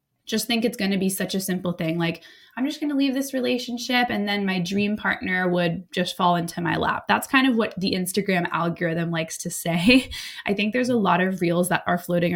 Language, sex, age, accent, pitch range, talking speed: English, female, 10-29, American, 170-210 Hz, 240 wpm